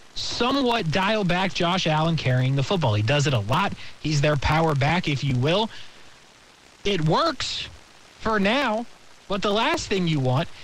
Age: 20-39